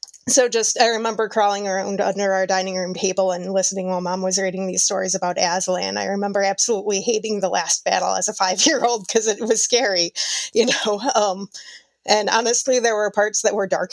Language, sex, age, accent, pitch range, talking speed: English, female, 20-39, American, 190-225 Hz, 200 wpm